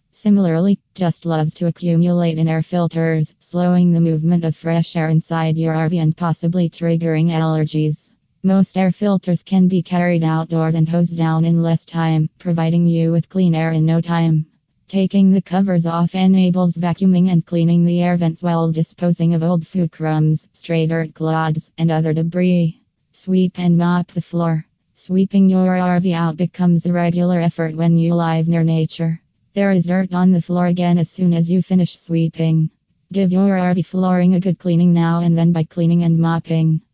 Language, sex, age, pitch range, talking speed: English, female, 20-39, 165-180 Hz, 180 wpm